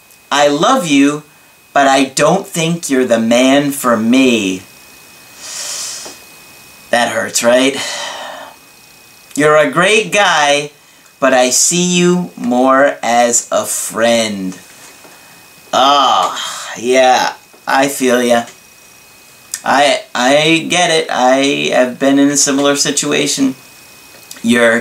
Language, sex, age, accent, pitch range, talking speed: English, male, 30-49, American, 130-160 Hz, 105 wpm